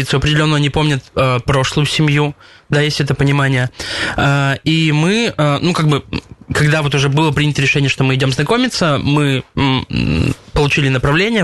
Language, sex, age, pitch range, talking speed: Russian, male, 20-39, 135-160 Hz, 165 wpm